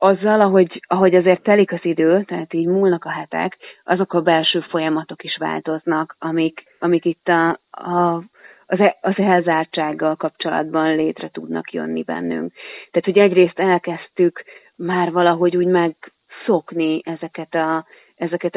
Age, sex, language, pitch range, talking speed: 30-49, female, Hungarian, 165-185 Hz, 140 wpm